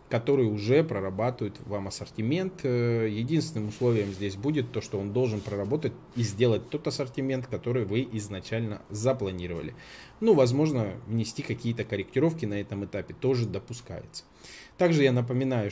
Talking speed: 135 wpm